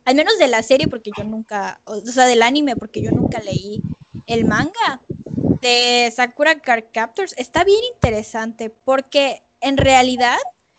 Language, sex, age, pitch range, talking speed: Spanish, female, 10-29, 230-295 Hz, 155 wpm